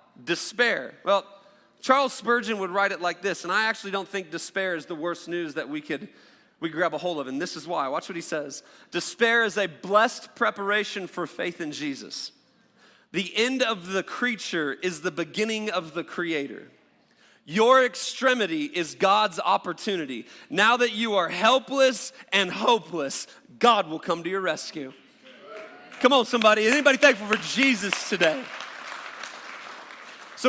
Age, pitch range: 40-59, 205-260 Hz